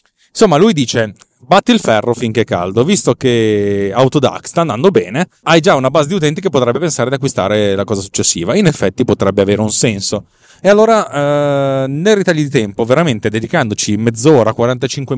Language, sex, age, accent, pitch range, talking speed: Italian, male, 30-49, native, 110-160 Hz, 180 wpm